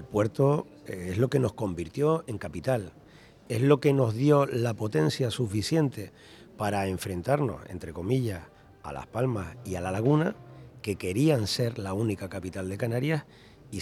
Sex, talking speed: male, 160 wpm